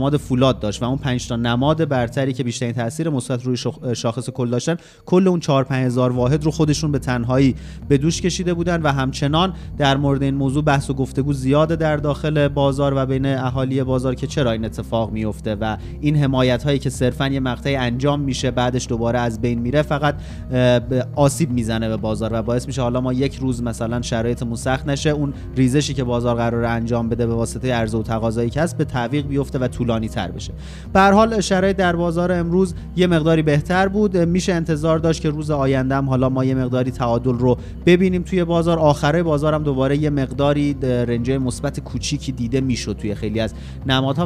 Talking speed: 195 wpm